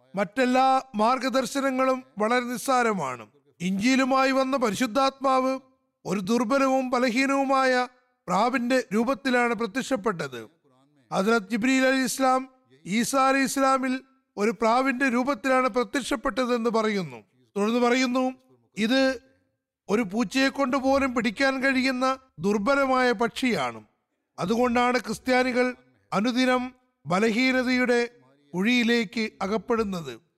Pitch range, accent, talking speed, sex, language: 205-260 Hz, native, 75 wpm, male, Malayalam